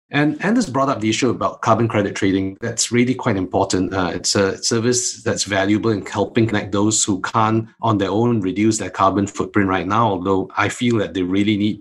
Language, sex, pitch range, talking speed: English, male, 100-125 Hz, 215 wpm